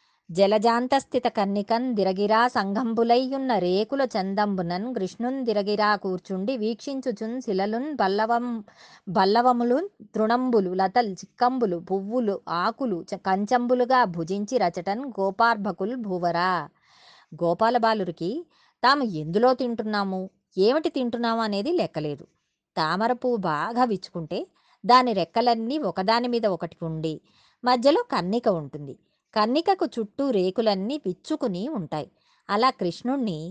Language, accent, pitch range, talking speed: Telugu, native, 190-255 Hz, 90 wpm